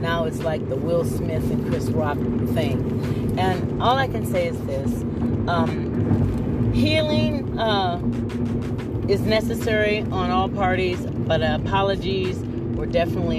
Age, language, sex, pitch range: 40-59, English, female, 115-125 Hz